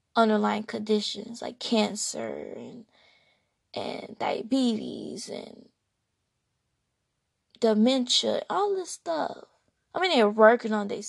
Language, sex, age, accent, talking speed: English, female, 20-39, American, 95 wpm